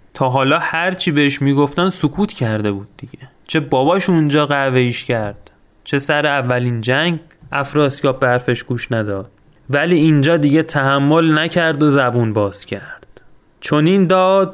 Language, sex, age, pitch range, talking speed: Persian, male, 30-49, 130-170 Hz, 140 wpm